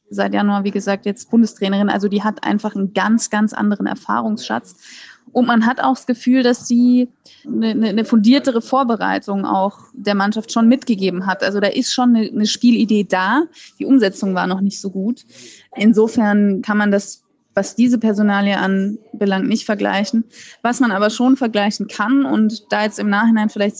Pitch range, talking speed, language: 205-240 Hz, 175 wpm, German